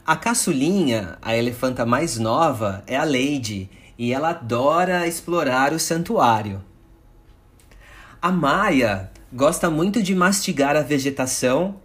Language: Portuguese